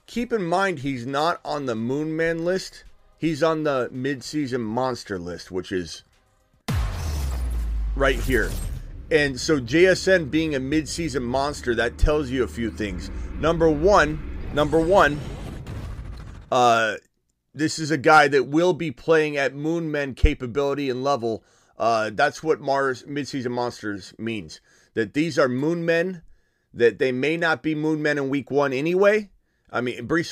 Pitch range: 120-160 Hz